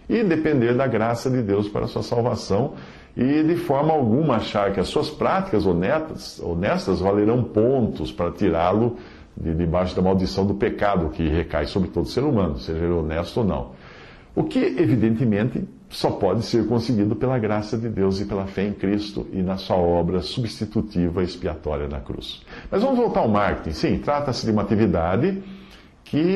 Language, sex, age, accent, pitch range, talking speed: Portuguese, male, 50-69, Brazilian, 90-120 Hz, 170 wpm